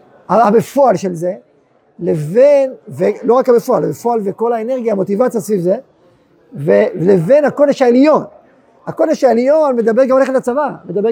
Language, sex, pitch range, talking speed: Hebrew, male, 215-265 Hz, 125 wpm